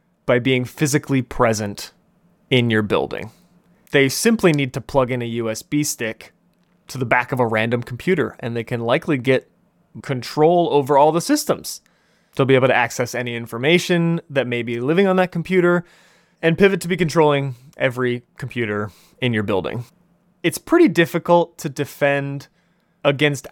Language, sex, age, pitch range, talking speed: English, male, 20-39, 125-175 Hz, 160 wpm